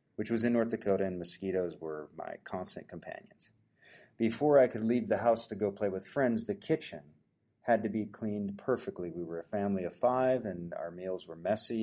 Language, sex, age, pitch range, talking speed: English, male, 30-49, 100-125 Hz, 205 wpm